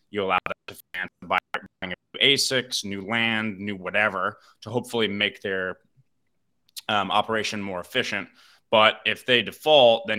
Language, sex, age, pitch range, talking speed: English, male, 20-39, 95-125 Hz, 140 wpm